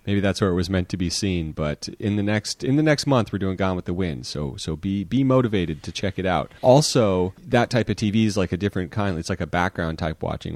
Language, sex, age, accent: English, male, 30-49, American